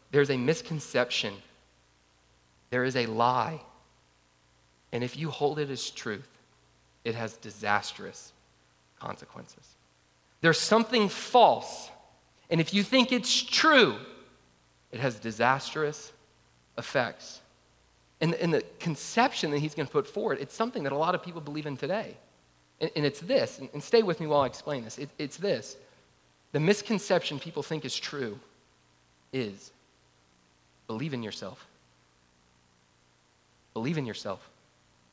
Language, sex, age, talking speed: English, male, 30-49, 135 wpm